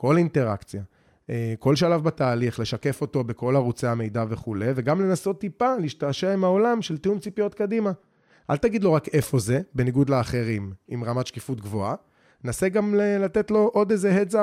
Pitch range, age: 125-180 Hz, 30-49